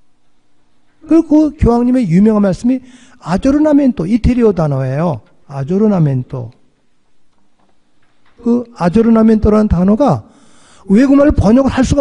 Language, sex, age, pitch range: Korean, male, 40-59, 175-250 Hz